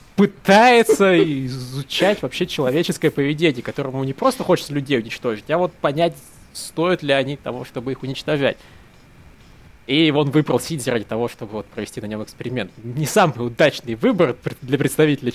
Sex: male